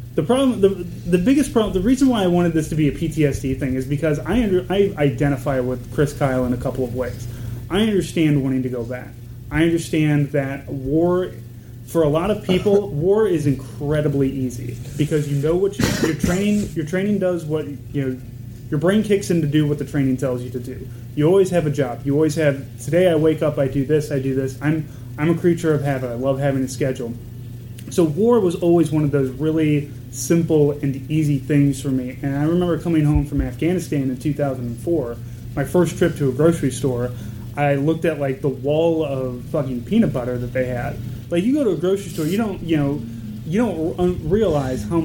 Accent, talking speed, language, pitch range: American, 215 wpm, English, 130-165 Hz